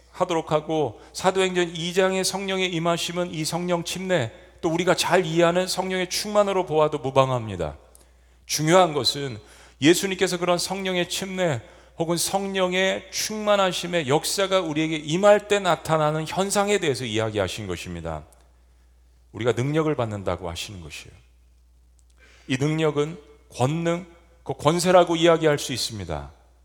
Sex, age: male, 40-59